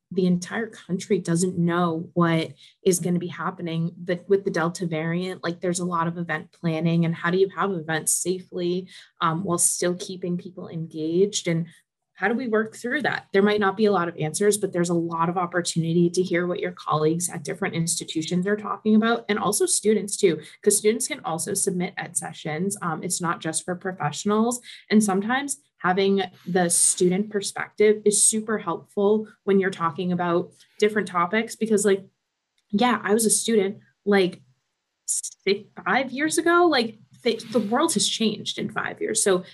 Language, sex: English, female